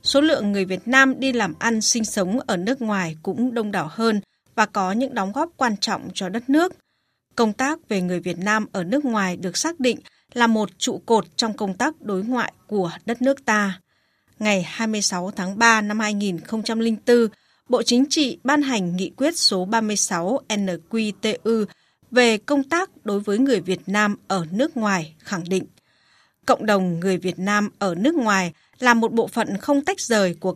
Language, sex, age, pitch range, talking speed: Vietnamese, female, 20-39, 190-250 Hz, 190 wpm